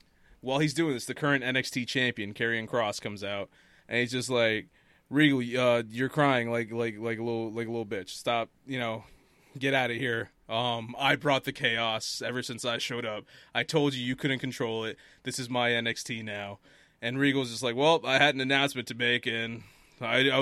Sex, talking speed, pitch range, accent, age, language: male, 210 wpm, 115-135 Hz, American, 20-39, English